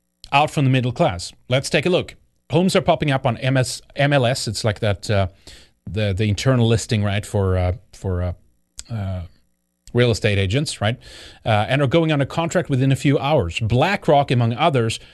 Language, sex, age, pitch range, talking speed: English, male, 30-49, 115-150 Hz, 185 wpm